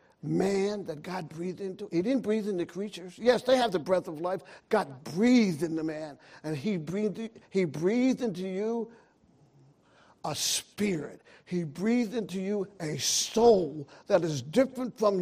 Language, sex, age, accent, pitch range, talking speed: English, male, 60-79, American, 185-240 Hz, 160 wpm